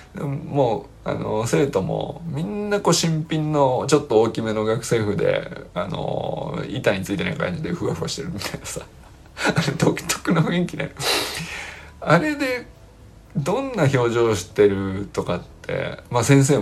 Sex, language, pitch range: male, Japanese, 95-160 Hz